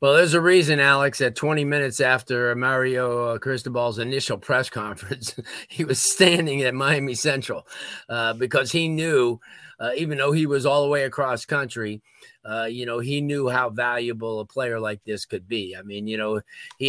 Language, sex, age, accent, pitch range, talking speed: English, male, 40-59, American, 120-140 Hz, 185 wpm